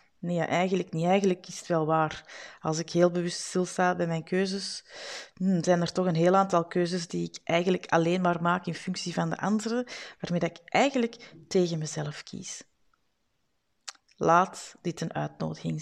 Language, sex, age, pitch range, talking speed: Dutch, female, 30-49, 160-205 Hz, 170 wpm